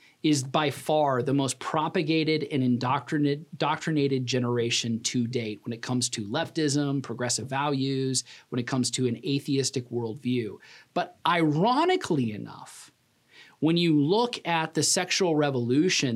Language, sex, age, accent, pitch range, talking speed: English, male, 40-59, American, 125-170 Hz, 135 wpm